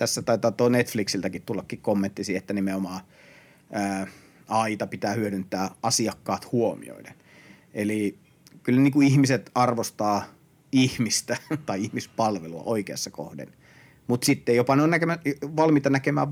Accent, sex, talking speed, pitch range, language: native, male, 110 wpm, 100-125 Hz, Finnish